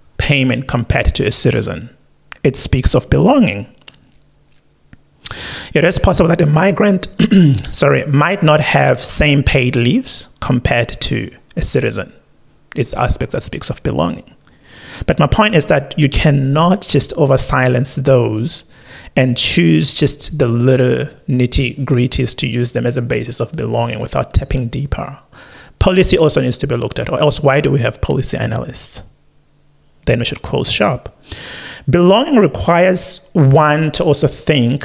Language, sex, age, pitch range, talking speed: English, male, 30-49, 120-150 Hz, 150 wpm